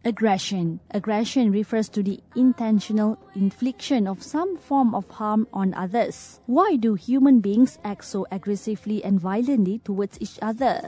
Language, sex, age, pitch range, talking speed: English, female, 20-39, 195-245 Hz, 145 wpm